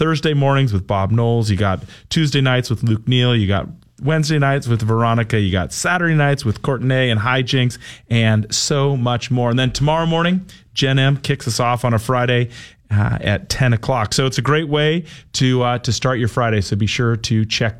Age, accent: 30-49, American